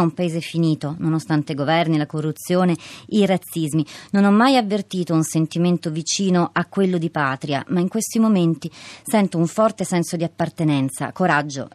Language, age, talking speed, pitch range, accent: Italian, 30-49, 165 wpm, 160-195 Hz, native